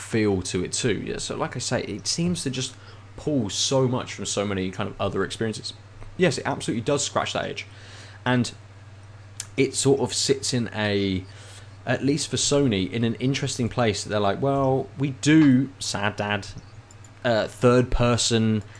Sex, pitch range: male, 100-115 Hz